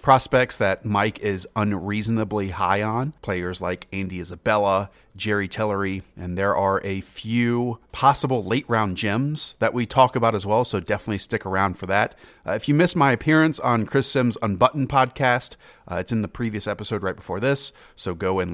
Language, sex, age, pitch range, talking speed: English, male, 30-49, 100-130 Hz, 185 wpm